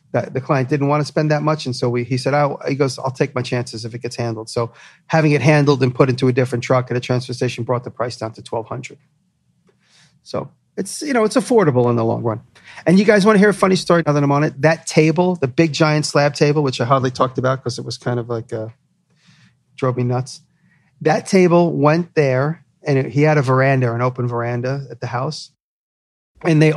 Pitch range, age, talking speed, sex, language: 120-150 Hz, 40-59, 245 wpm, male, English